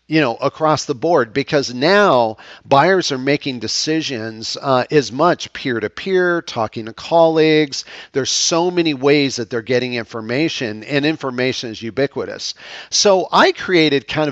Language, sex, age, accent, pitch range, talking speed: English, male, 50-69, American, 120-160 Hz, 145 wpm